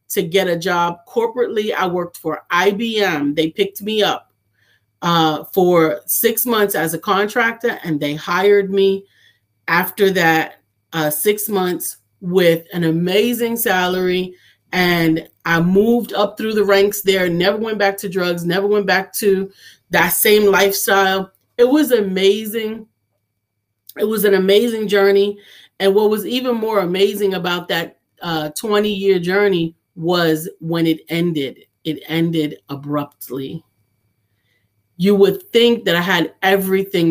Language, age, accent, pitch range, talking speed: English, 30-49, American, 165-205 Hz, 140 wpm